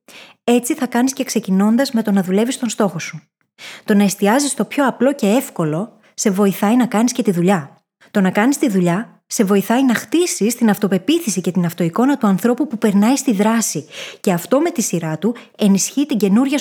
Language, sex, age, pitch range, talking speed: Greek, female, 20-39, 190-245 Hz, 200 wpm